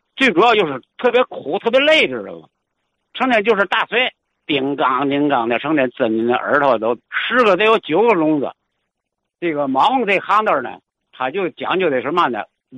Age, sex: 60-79, male